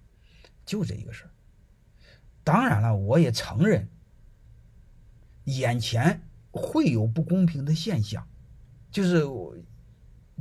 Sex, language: male, Chinese